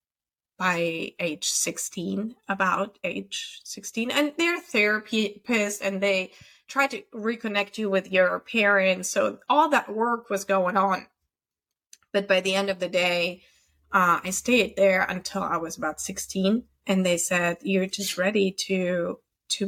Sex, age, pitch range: female, 20-39, 180-215 Hz